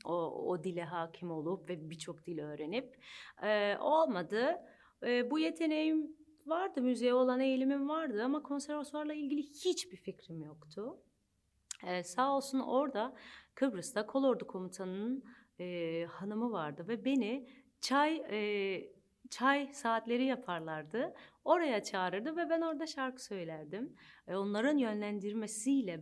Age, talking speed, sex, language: 40-59, 120 wpm, female, Turkish